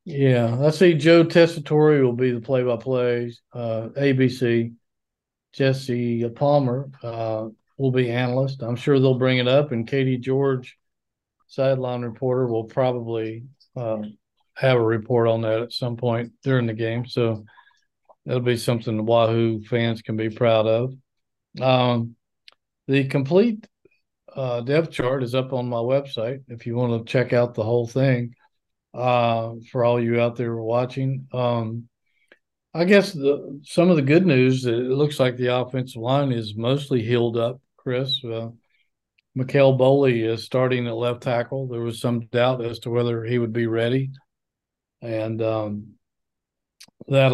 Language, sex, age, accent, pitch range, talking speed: English, male, 50-69, American, 115-135 Hz, 155 wpm